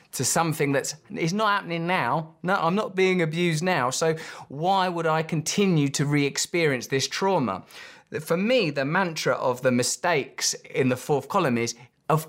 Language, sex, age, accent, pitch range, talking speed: English, male, 20-39, British, 130-180 Hz, 170 wpm